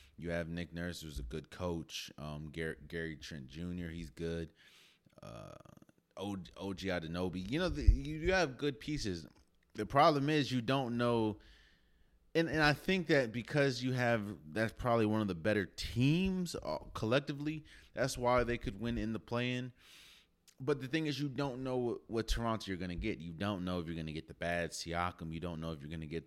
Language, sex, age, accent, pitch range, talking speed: English, male, 30-49, American, 85-120 Hz, 205 wpm